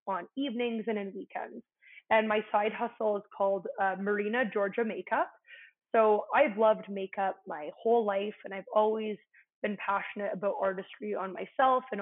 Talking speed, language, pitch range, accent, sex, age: 160 wpm, English, 195-230 Hz, American, female, 20-39